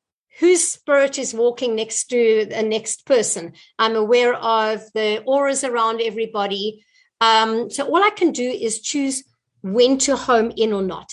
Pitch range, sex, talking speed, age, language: 210-280 Hz, female, 160 wpm, 50-69, English